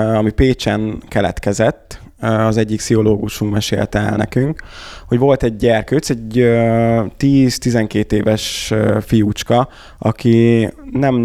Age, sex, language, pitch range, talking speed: 20-39, male, Hungarian, 105-120 Hz, 100 wpm